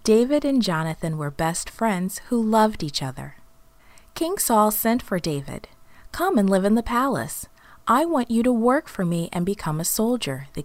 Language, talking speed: English, 185 wpm